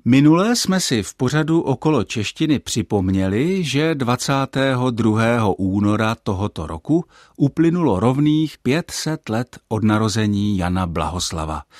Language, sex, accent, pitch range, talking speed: Czech, male, native, 100-130 Hz, 105 wpm